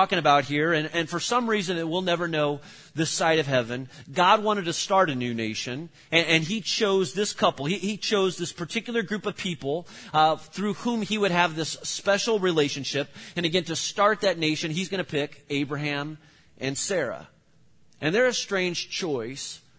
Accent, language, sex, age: American, English, male, 30-49